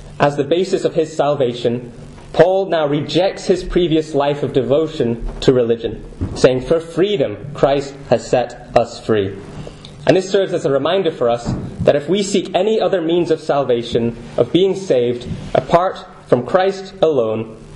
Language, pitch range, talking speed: English, 130-170 Hz, 160 wpm